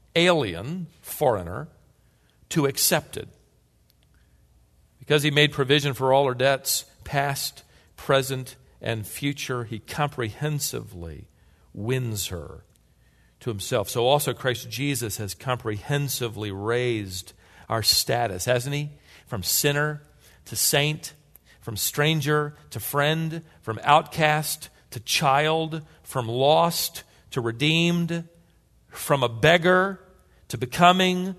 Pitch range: 115-150 Hz